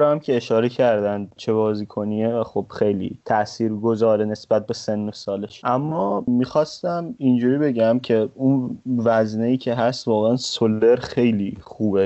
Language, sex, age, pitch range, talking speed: Persian, male, 20-39, 110-130 Hz, 145 wpm